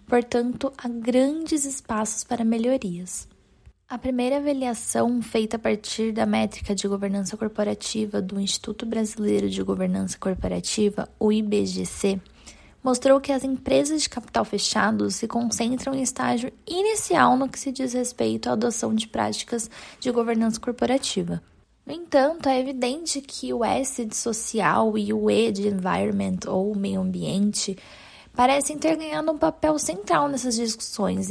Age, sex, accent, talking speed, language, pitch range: 10-29, female, Brazilian, 140 wpm, Portuguese, 210-275 Hz